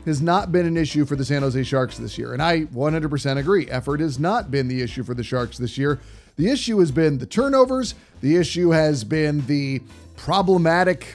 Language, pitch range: English, 145-175 Hz